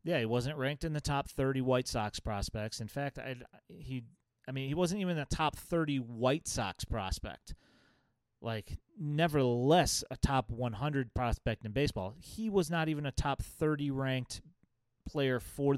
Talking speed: 165 wpm